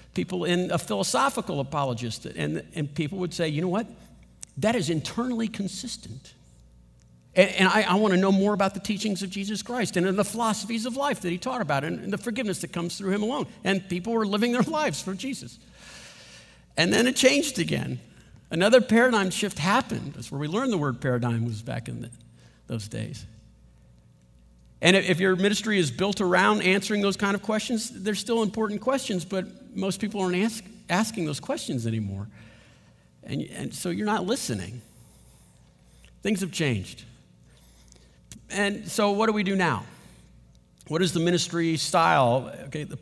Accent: American